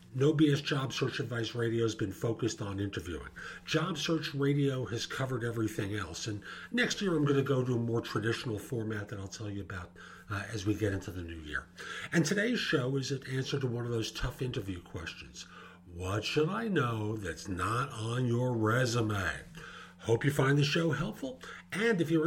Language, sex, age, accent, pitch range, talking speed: English, male, 50-69, American, 110-155 Hz, 200 wpm